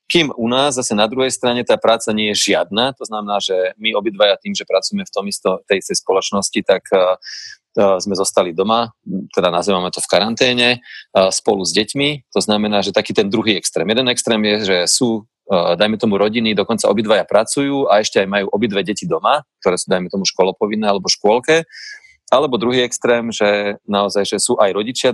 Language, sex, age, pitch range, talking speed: Slovak, male, 30-49, 95-120 Hz, 185 wpm